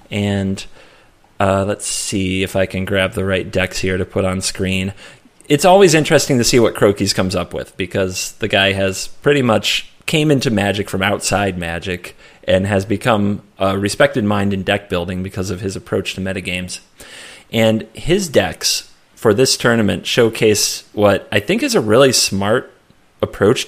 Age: 30-49